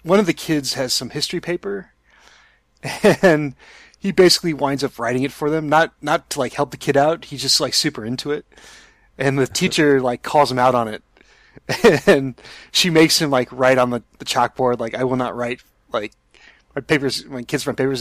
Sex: male